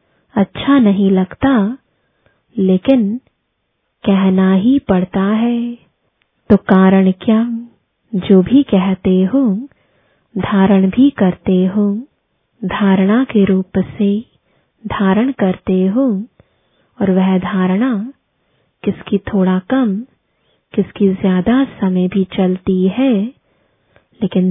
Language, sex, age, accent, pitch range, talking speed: English, female, 20-39, Indian, 190-235 Hz, 95 wpm